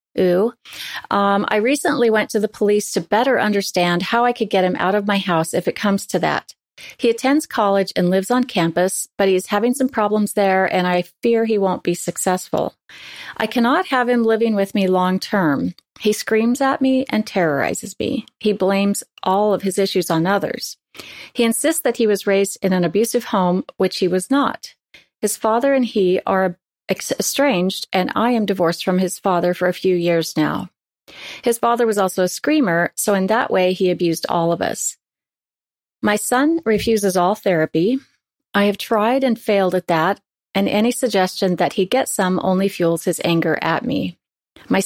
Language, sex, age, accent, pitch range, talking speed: English, female, 40-59, American, 180-230 Hz, 195 wpm